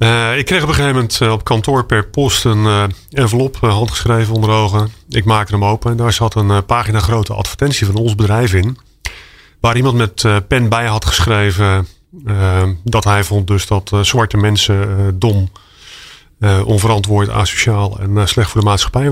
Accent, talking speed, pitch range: Dutch, 200 wpm, 100-115 Hz